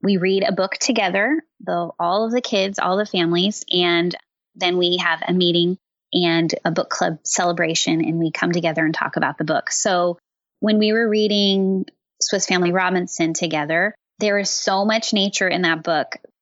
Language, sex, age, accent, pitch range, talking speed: English, female, 20-39, American, 175-215 Hz, 180 wpm